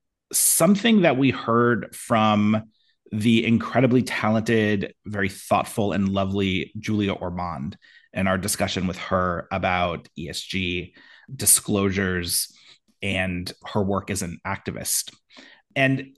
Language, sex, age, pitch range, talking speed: English, male, 30-49, 95-125 Hz, 110 wpm